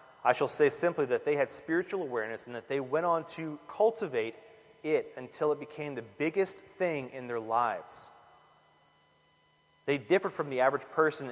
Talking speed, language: 170 wpm, English